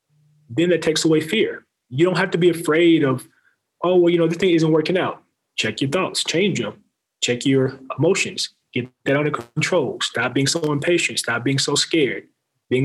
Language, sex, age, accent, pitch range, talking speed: English, male, 30-49, American, 125-155 Hz, 195 wpm